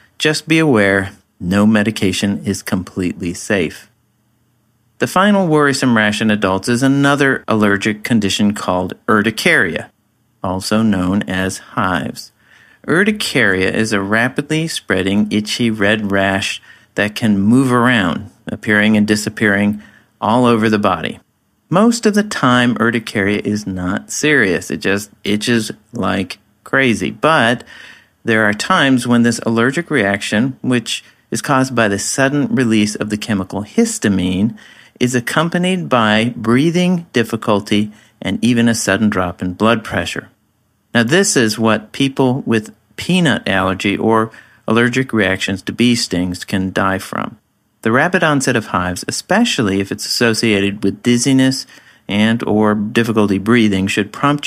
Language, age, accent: English, 40-59, American